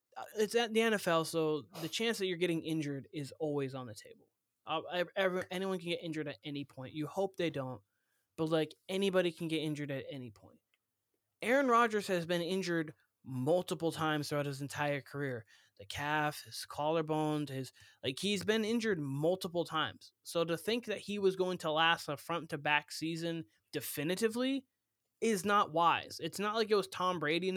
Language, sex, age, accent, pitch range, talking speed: English, male, 20-39, American, 140-180 Hz, 185 wpm